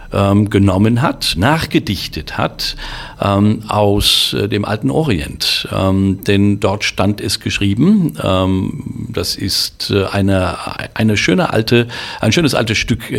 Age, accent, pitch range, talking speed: 50-69, German, 95-120 Hz, 105 wpm